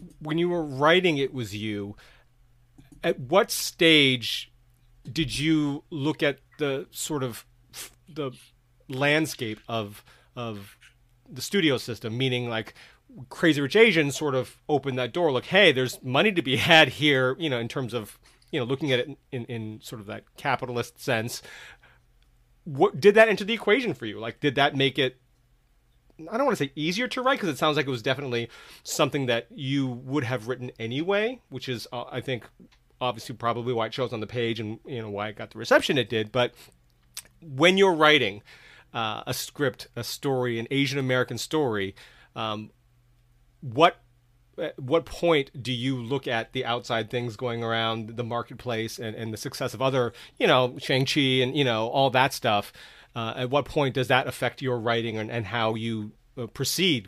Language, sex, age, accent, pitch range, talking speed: English, male, 30-49, American, 120-145 Hz, 185 wpm